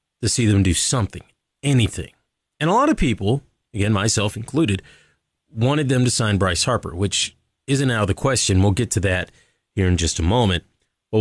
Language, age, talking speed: English, 30-49, 195 wpm